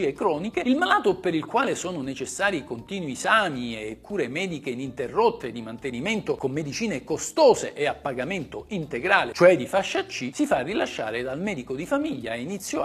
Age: 50-69